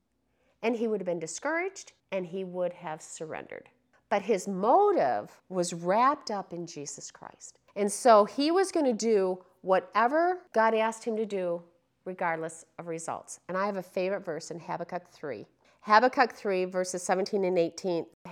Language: English